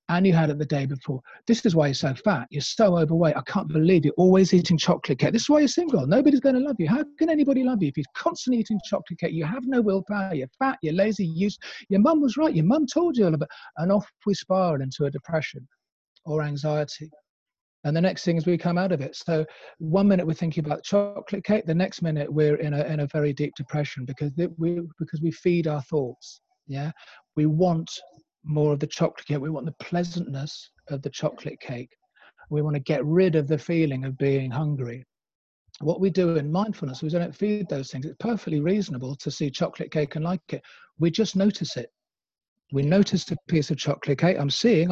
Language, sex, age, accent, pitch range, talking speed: English, male, 40-59, British, 150-195 Hz, 230 wpm